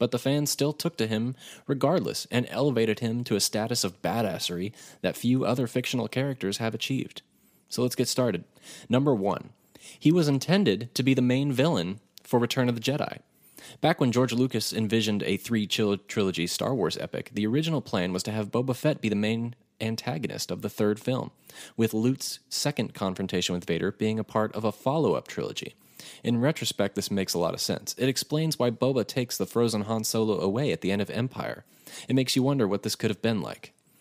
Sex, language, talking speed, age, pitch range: male, English, 200 wpm, 20-39, 105-130 Hz